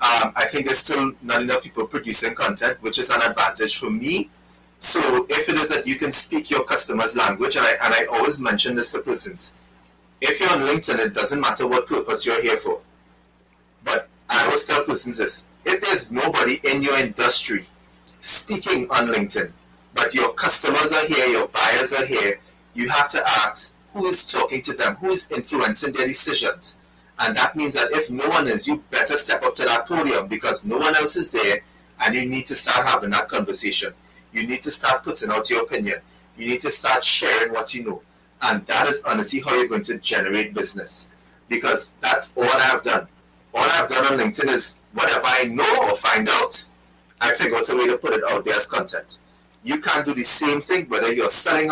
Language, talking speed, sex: English, 210 wpm, male